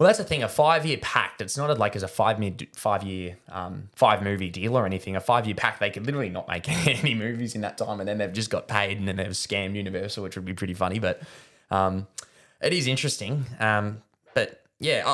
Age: 20-39